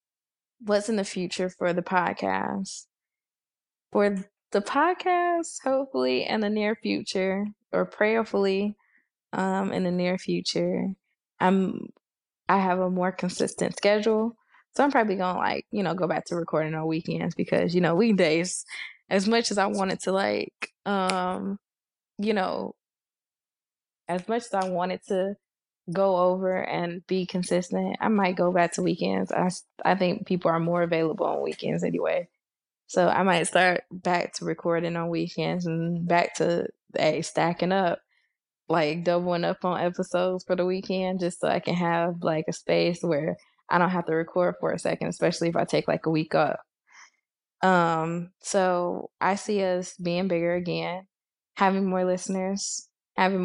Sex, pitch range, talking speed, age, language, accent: female, 175-195 Hz, 160 wpm, 20-39, English, American